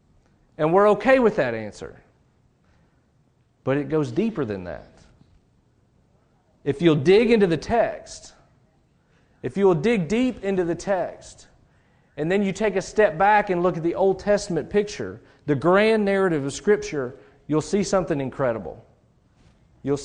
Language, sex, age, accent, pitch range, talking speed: English, male, 40-59, American, 140-195 Hz, 145 wpm